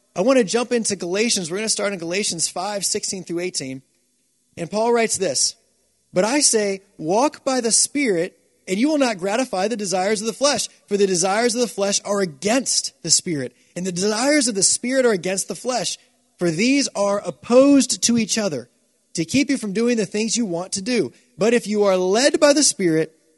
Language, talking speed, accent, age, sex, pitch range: English, 210 wpm, American, 30-49, male, 190-245 Hz